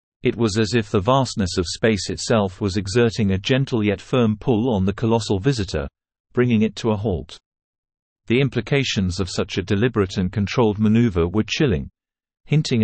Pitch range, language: 95-120 Hz, English